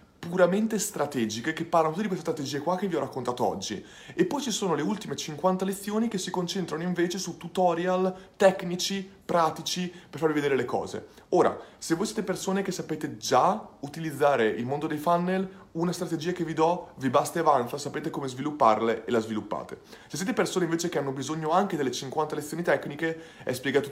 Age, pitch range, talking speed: 30-49, 115-175 Hz, 190 wpm